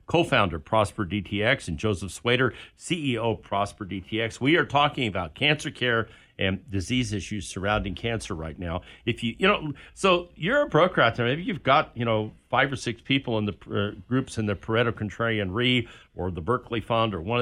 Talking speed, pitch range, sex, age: 200 wpm, 100-125 Hz, male, 50-69